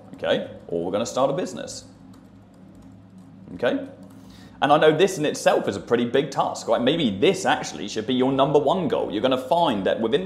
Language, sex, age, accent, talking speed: English, male, 30-49, British, 200 wpm